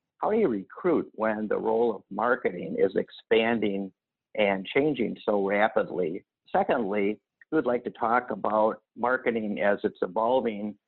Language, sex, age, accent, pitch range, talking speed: English, male, 50-69, American, 105-130 Hz, 145 wpm